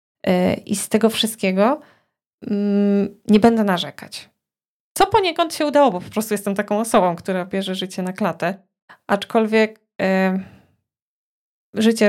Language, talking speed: Polish, 125 wpm